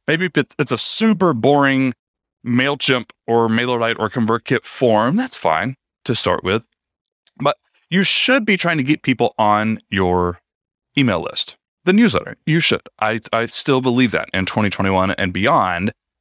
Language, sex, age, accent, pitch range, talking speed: English, male, 30-49, American, 115-190 Hz, 150 wpm